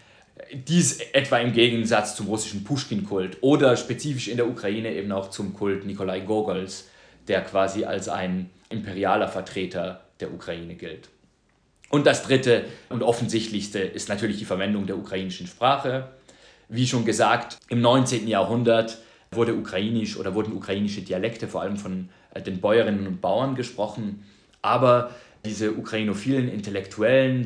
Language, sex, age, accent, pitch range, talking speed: French, male, 30-49, German, 95-120 Hz, 130 wpm